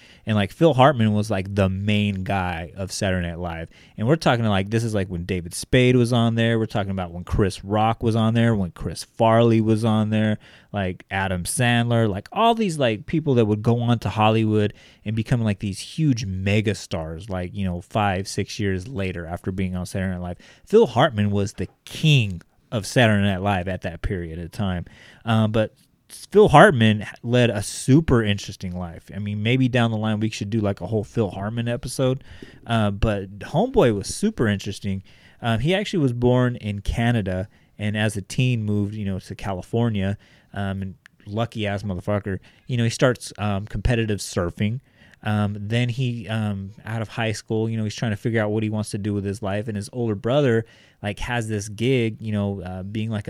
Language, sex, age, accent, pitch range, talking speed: English, male, 30-49, American, 95-115 Hz, 205 wpm